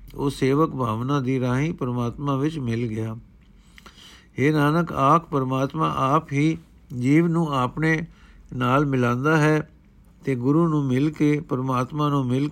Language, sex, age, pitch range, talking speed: Punjabi, male, 50-69, 130-165 Hz, 140 wpm